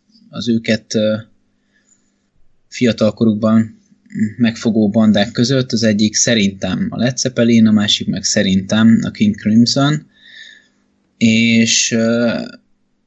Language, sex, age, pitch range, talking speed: Hungarian, male, 20-39, 105-125 Hz, 90 wpm